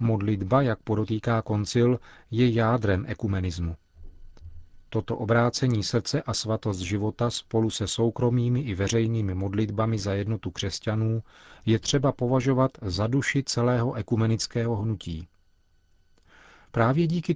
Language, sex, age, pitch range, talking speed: Czech, male, 40-59, 100-120 Hz, 110 wpm